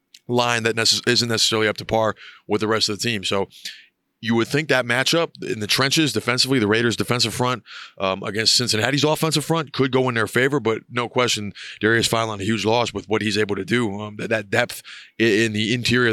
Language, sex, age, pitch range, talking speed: English, male, 20-39, 110-135 Hz, 225 wpm